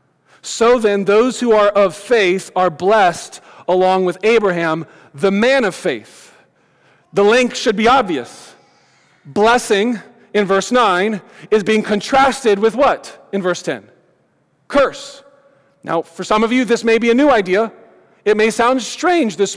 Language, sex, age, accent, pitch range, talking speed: English, male, 40-59, American, 190-230 Hz, 155 wpm